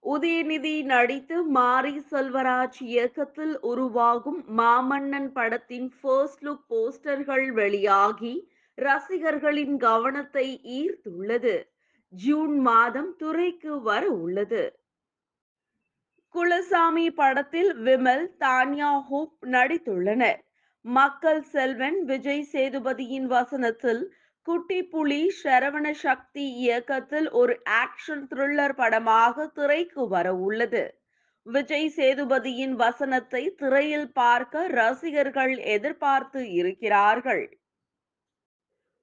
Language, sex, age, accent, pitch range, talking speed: Tamil, female, 20-39, native, 250-310 Hz, 75 wpm